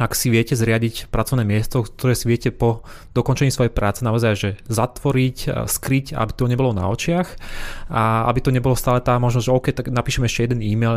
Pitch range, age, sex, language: 110-130 Hz, 20-39, male, Slovak